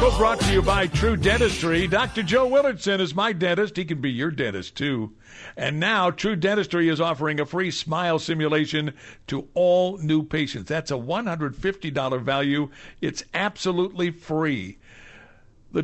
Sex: male